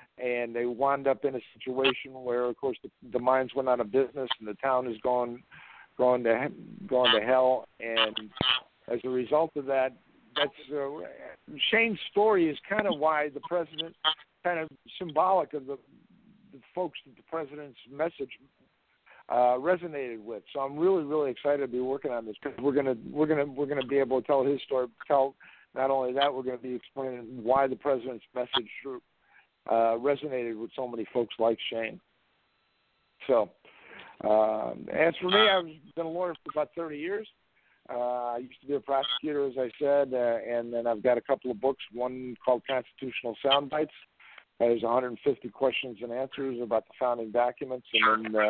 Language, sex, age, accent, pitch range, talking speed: English, male, 60-79, American, 120-145 Hz, 185 wpm